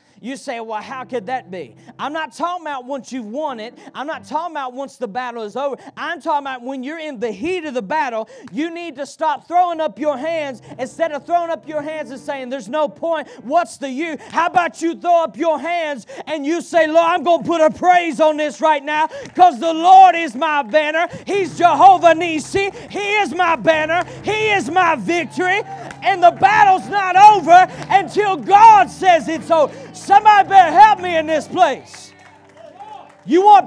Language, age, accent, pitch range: English, 40-59, American, 275-350 Hz